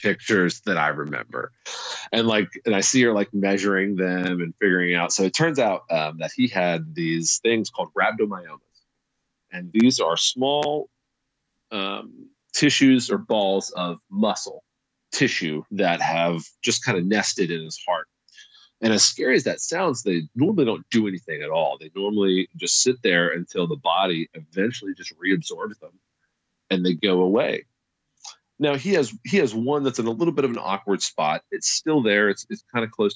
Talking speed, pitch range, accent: 180 wpm, 90-130 Hz, American